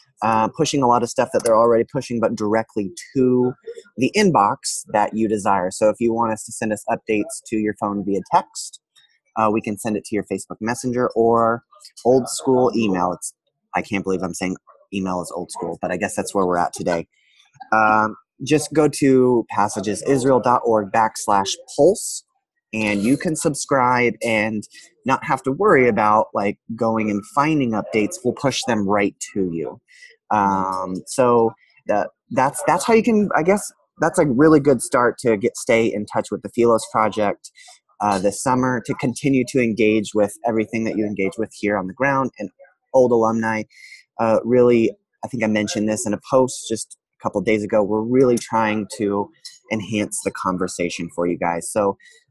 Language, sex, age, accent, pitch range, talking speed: English, male, 20-39, American, 105-130 Hz, 180 wpm